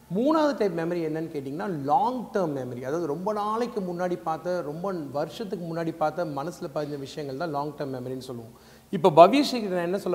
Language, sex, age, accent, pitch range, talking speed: Tamil, male, 40-59, native, 155-215 Hz, 175 wpm